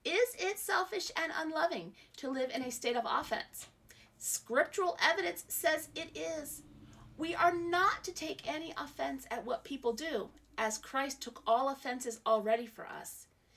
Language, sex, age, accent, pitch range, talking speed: English, female, 40-59, American, 225-315 Hz, 160 wpm